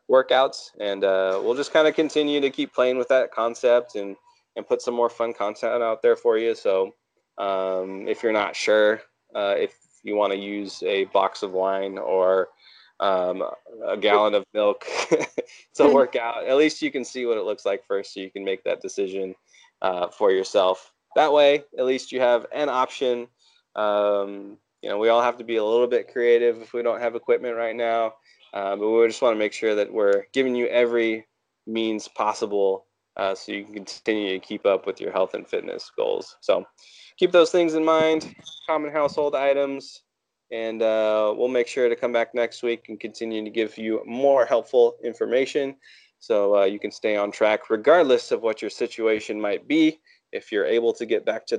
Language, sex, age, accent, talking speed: English, male, 20-39, American, 200 wpm